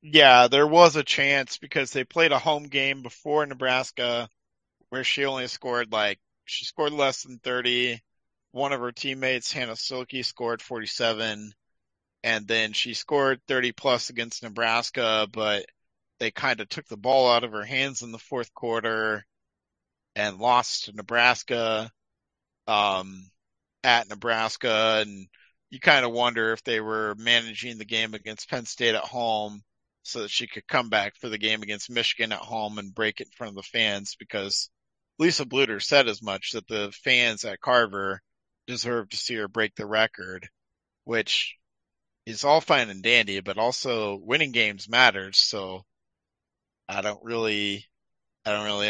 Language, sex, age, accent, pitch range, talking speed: English, male, 40-59, American, 105-125 Hz, 165 wpm